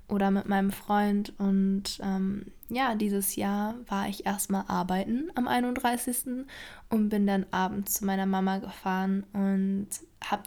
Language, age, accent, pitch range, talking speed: German, 20-39, German, 195-220 Hz, 145 wpm